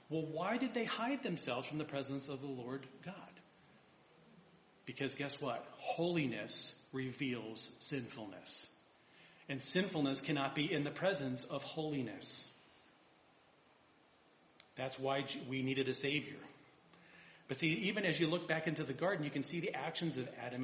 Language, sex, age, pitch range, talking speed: English, male, 40-59, 130-160 Hz, 150 wpm